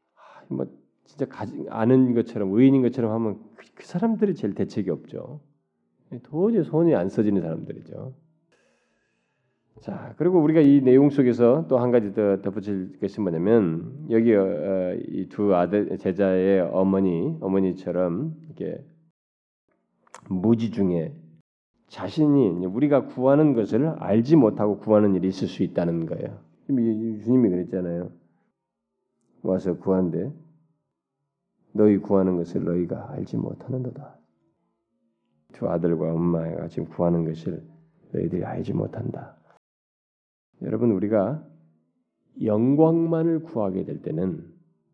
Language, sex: Korean, male